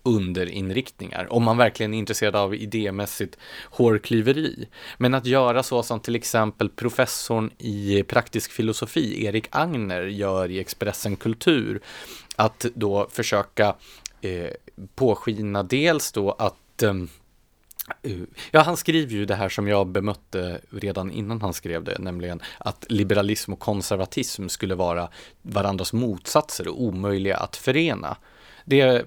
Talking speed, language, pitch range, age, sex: 130 wpm, Swedish, 95-115 Hz, 30-49, male